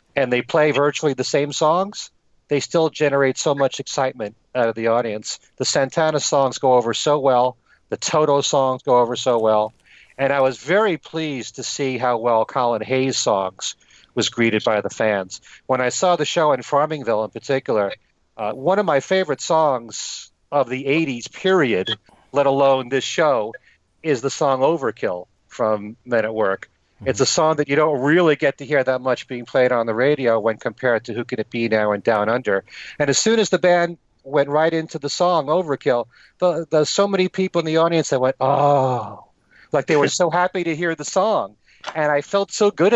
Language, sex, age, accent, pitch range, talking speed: English, male, 40-59, American, 125-160 Hz, 200 wpm